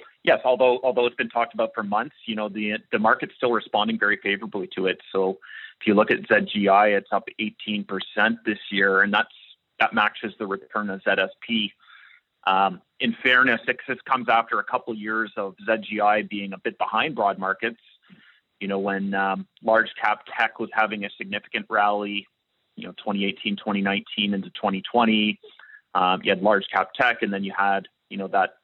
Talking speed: 180 wpm